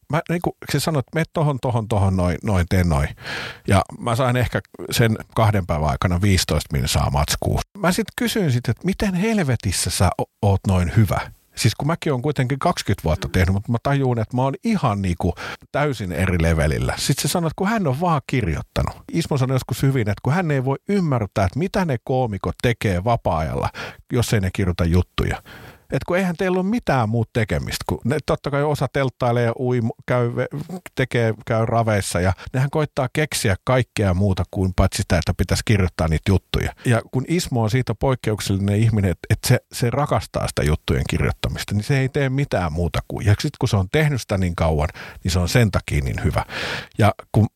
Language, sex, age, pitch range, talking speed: Finnish, male, 50-69, 95-135 Hz, 200 wpm